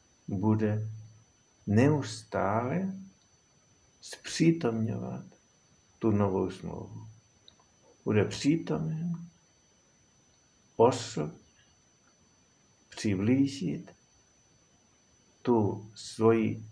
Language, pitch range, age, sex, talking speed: Czech, 105-135 Hz, 60-79, male, 45 wpm